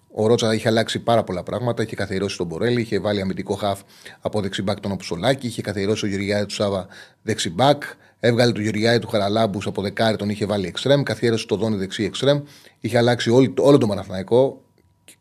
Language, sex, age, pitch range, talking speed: Greek, male, 30-49, 105-140 Hz, 190 wpm